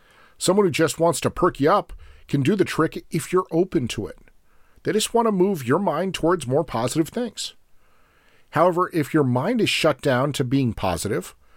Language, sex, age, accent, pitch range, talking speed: English, male, 40-59, American, 125-180 Hz, 195 wpm